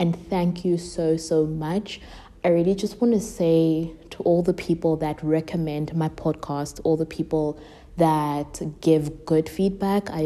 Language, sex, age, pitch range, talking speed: English, female, 20-39, 155-180 Hz, 165 wpm